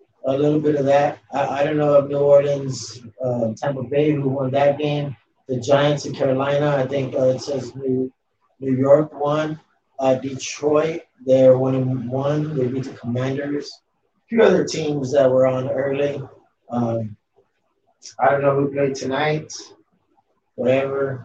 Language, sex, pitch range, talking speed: English, male, 130-155 Hz, 165 wpm